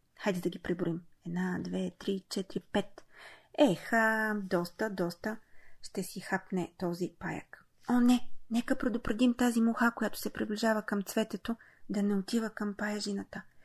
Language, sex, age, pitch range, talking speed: Bulgarian, female, 30-49, 190-250 Hz, 145 wpm